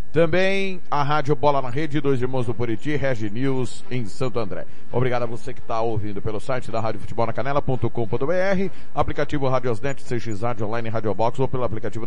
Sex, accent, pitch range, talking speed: male, Brazilian, 115-150 Hz, 195 wpm